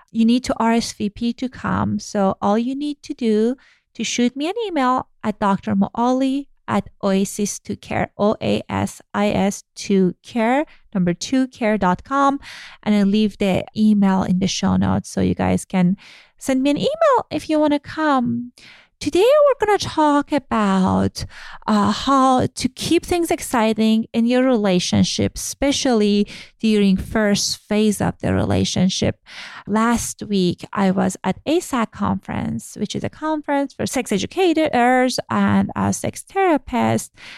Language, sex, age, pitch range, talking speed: English, female, 30-49, 200-275 Hz, 140 wpm